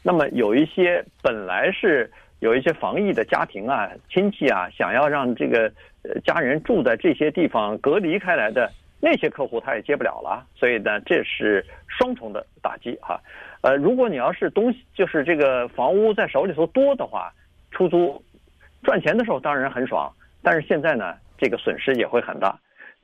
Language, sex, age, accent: Chinese, male, 50-69, native